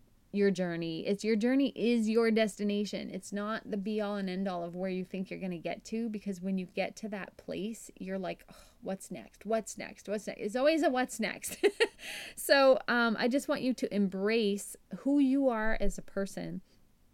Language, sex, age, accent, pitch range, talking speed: English, female, 30-49, American, 190-245 Hz, 210 wpm